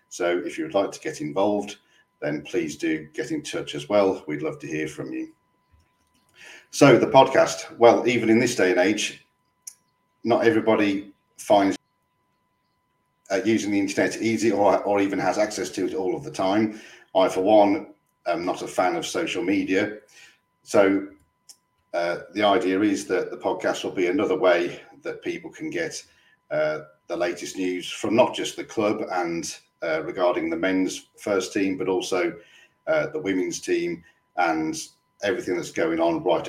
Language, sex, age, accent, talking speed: English, male, 50-69, British, 175 wpm